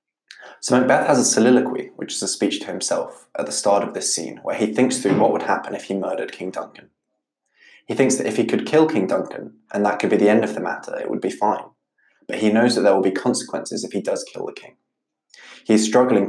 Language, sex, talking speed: English, male, 250 wpm